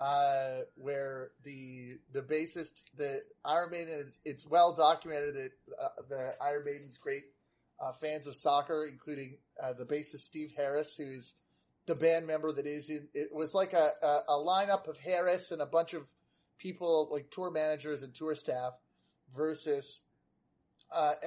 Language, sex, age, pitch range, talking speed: English, male, 30-49, 140-165 Hz, 160 wpm